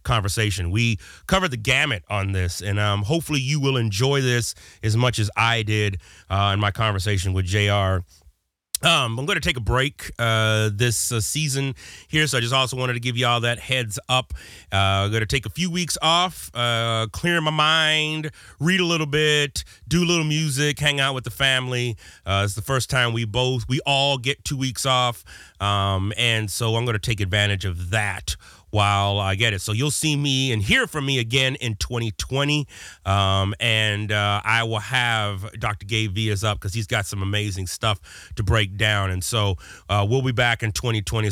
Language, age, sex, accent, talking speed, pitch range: English, 30-49, male, American, 205 wpm, 105-140 Hz